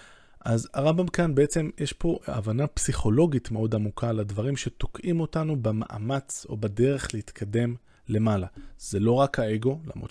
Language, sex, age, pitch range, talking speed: Hebrew, male, 20-39, 105-125 Hz, 135 wpm